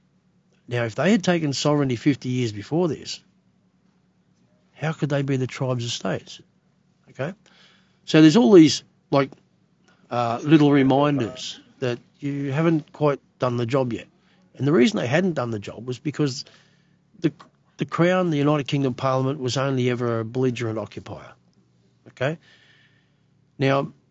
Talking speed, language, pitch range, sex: 150 wpm, English, 120-155 Hz, male